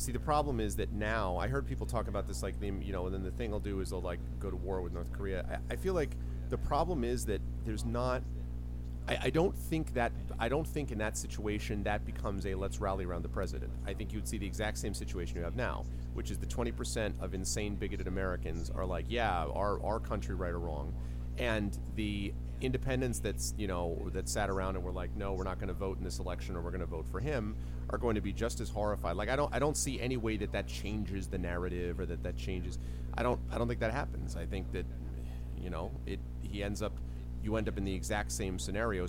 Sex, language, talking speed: male, English, 255 wpm